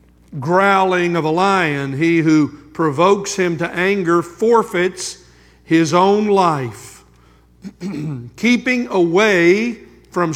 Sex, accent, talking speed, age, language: male, American, 100 wpm, 50-69, English